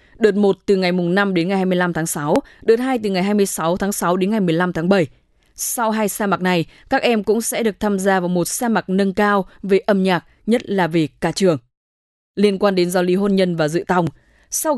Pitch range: 175-215 Hz